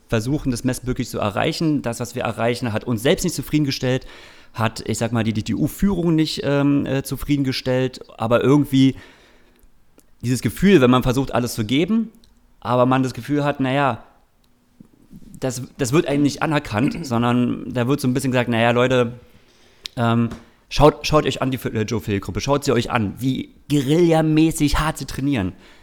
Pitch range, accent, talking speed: 110-140 Hz, German, 165 wpm